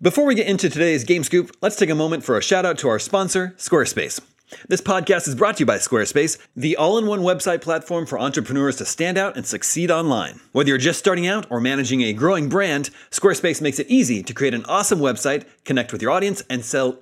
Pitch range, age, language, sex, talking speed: 135-190 Hz, 30-49, English, male, 225 wpm